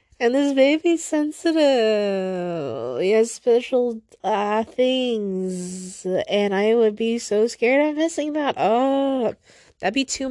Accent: American